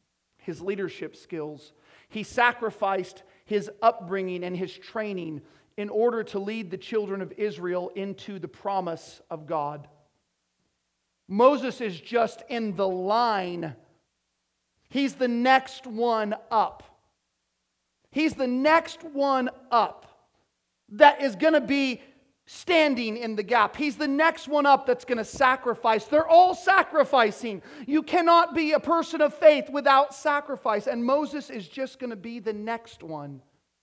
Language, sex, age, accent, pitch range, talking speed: English, male, 40-59, American, 170-250 Hz, 140 wpm